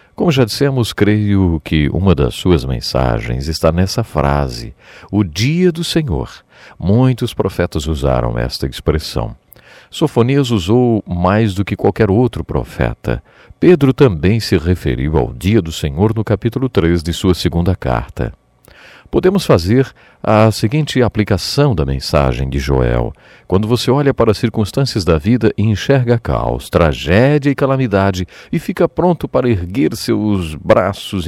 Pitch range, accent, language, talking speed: 85-130 Hz, Brazilian, English, 140 wpm